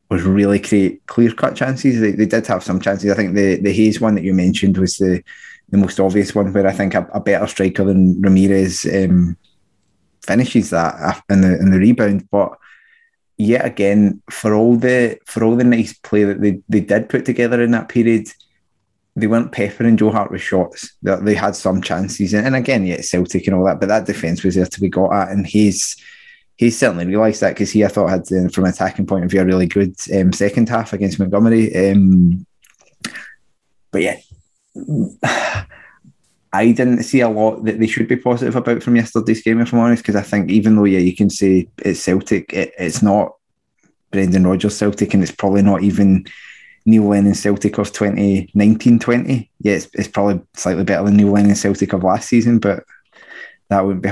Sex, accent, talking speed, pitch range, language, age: male, British, 200 wpm, 95-110 Hz, English, 20-39